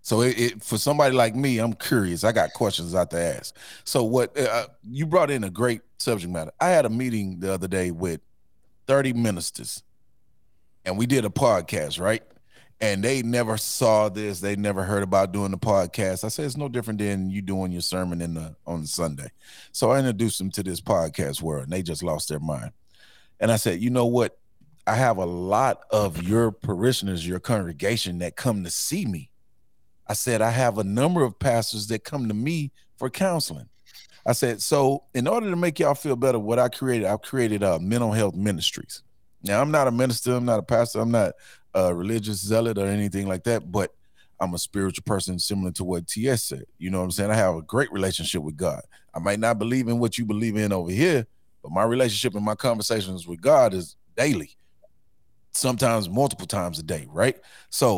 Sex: male